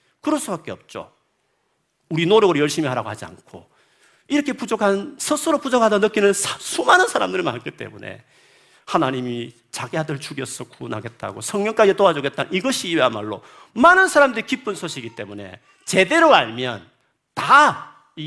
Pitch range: 130-215 Hz